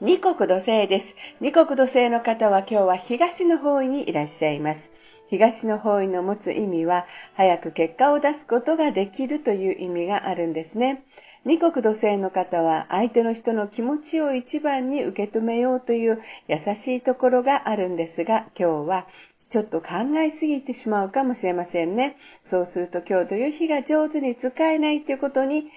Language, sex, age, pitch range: Japanese, female, 50-69, 180-270 Hz